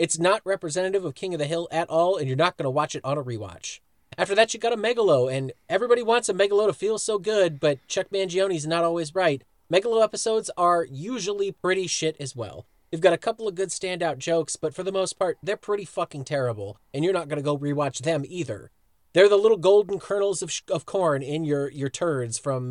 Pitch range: 145-195 Hz